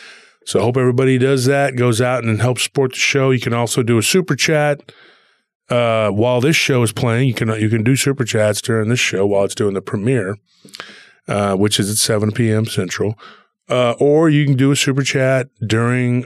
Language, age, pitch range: English, 30-49, 105-135 Hz